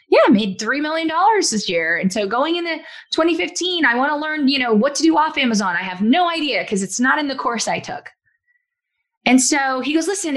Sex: female